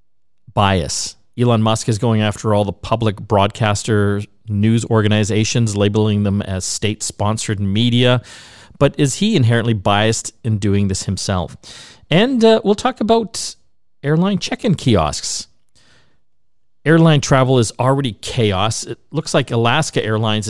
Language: English